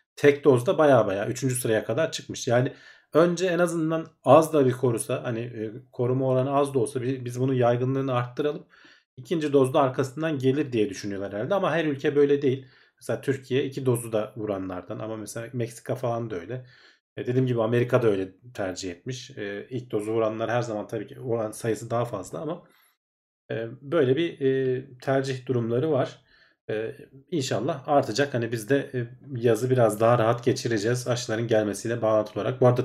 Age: 40-59